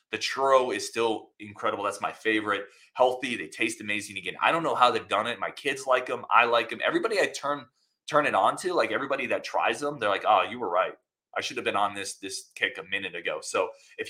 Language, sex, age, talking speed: English, male, 20-39, 245 wpm